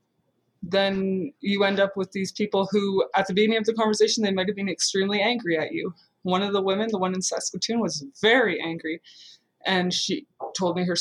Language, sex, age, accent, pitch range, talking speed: English, female, 20-39, American, 175-210 Hz, 200 wpm